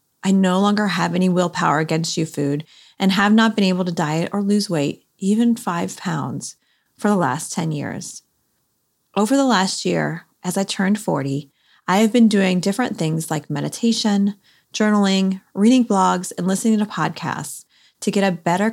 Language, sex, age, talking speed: English, female, 30-49, 175 wpm